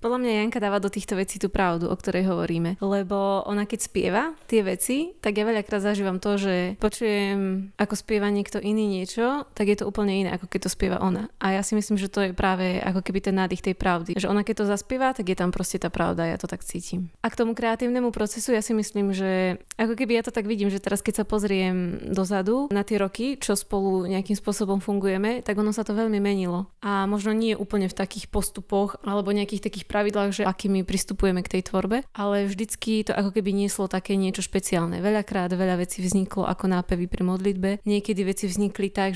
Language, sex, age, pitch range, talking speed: Slovak, female, 20-39, 185-210 Hz, 220 wpm